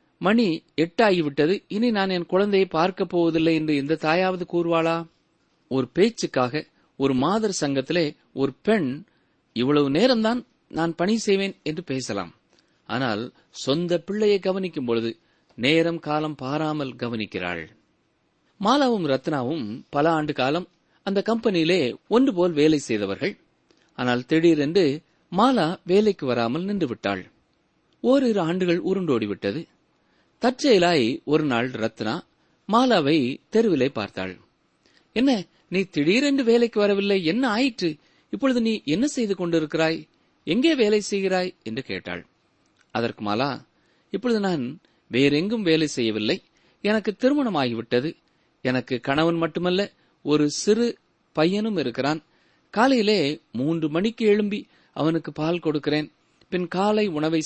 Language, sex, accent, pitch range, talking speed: Tamil, male, native, 145-205 Hz, 110 wpm